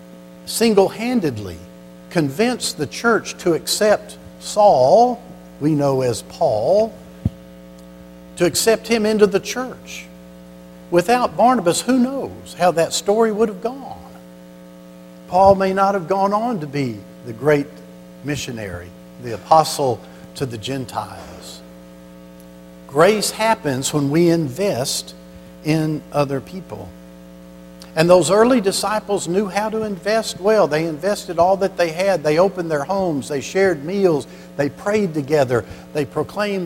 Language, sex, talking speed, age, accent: English, male, 130 wpm, 50-69, American